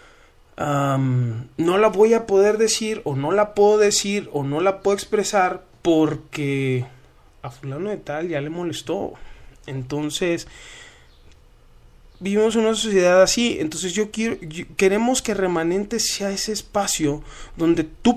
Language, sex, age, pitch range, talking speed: Spanish, male, 20-39, 145-205 Hz, 140 wpm